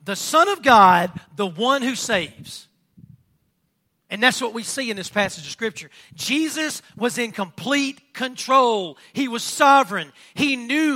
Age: 40-59